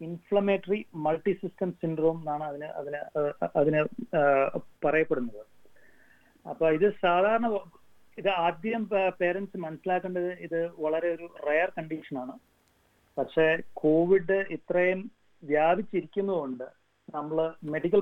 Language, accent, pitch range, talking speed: Malayalam, native, 140-180 Hz, 95 wpm